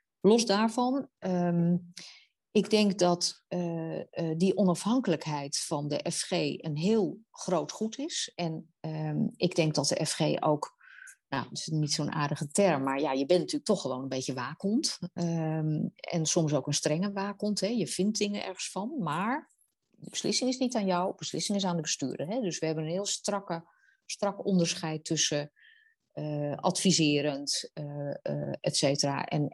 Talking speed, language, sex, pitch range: 170 wpm, Dutch, female, 155-195 Hz